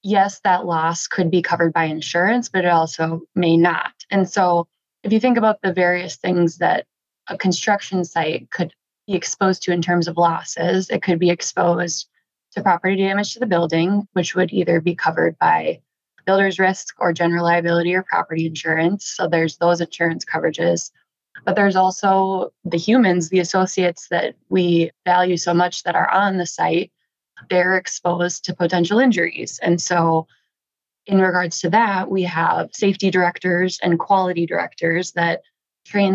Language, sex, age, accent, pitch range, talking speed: English, female, 20-39, American, 170-190 Hz, 165 wpm